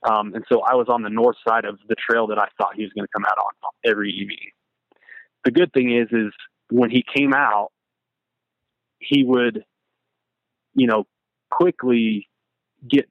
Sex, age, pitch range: male, 20-39, 105-125 Hz